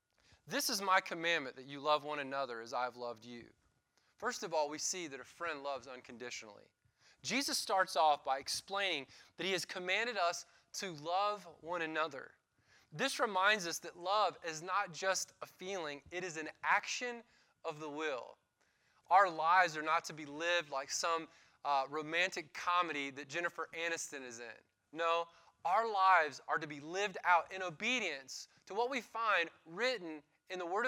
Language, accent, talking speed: English, American, 175 wpm